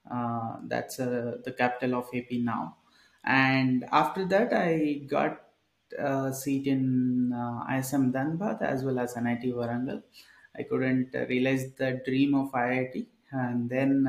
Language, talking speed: English, 145 wpm